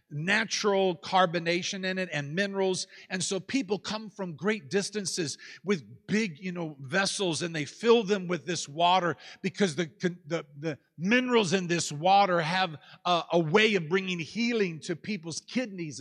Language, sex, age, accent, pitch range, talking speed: English, male, 50-69, American, 170-215 Hz, 160 wpm